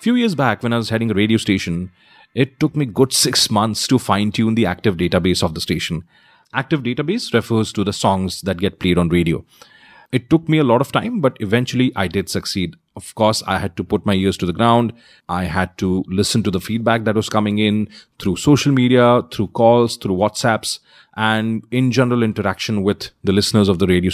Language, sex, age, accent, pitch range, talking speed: English, male, 30-49, Indian, 95-120 Hz, 215 wpm